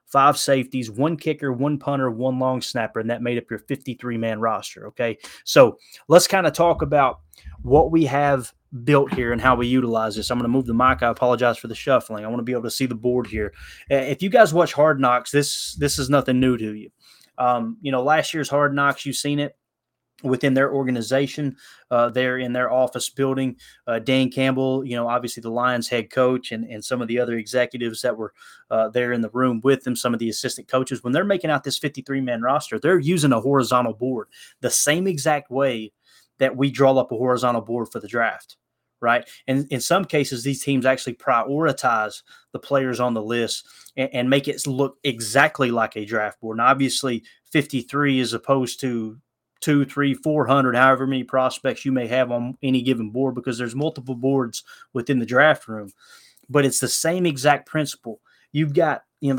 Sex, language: male, English